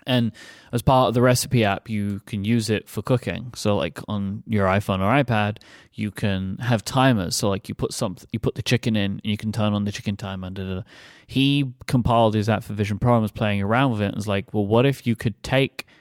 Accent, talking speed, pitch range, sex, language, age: British, 250 wpm, 110-135 Hz, male, English, 20-39